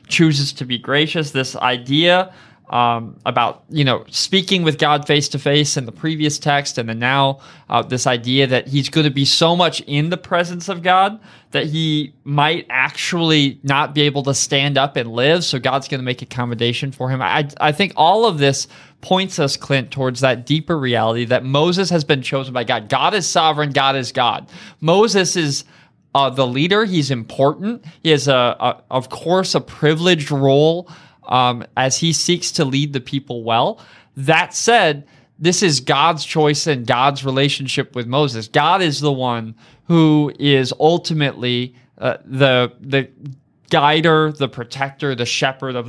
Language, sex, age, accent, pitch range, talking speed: English, male, 20-39, American, 130-165 Hz, 180 wpm